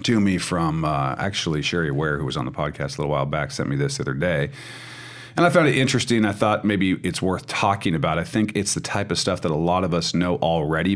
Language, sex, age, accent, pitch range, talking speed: English, male, 40-59, American, 80-100 Hz, 265 wpm